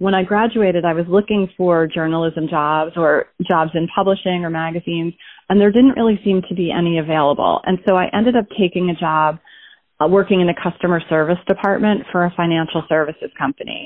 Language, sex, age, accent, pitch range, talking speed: English, female, 30-49, American, 165-195 Hz, 185 wpm